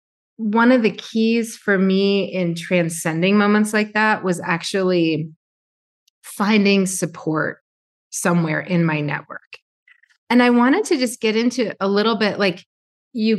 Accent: American